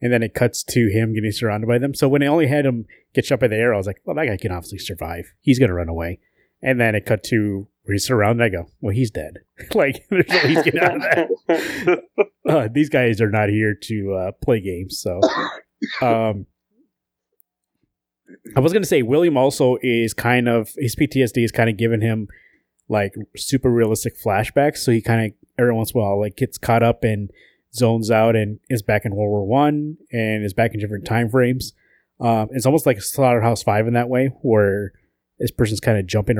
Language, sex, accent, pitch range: English, male, American, 105-120 Hz